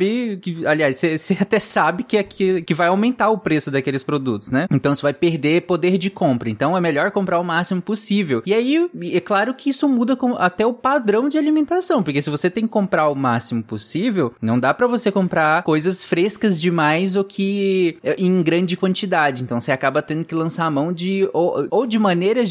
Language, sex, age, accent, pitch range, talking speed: Portuguese, male, 20-39, Brazilian, 140-185 Hz, 210 wpm